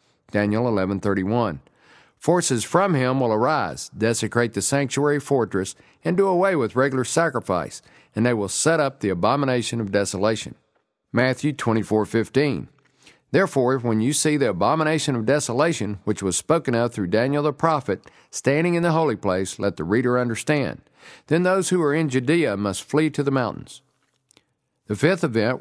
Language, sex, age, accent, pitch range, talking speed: English, male, 50-69, American, 110-150 Hz, 155 wpm